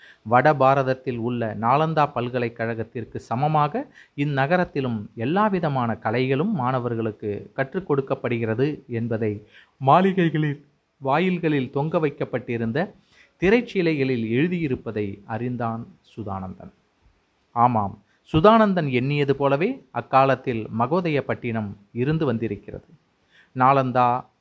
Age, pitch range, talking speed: 30-49, 115-150 Hz, 75 wpm